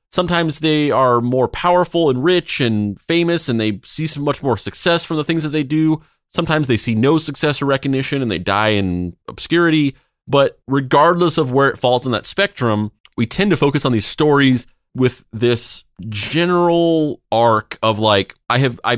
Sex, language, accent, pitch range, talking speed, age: male, English, American, 100-130 Hz, 185 wpm, 30-49